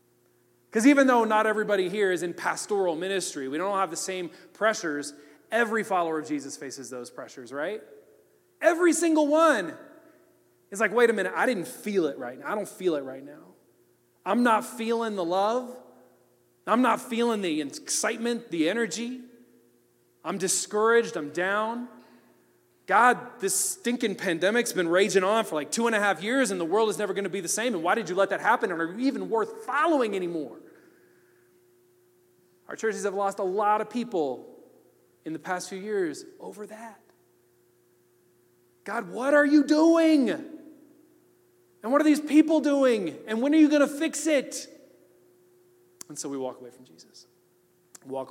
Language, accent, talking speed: English, American, 175 wpm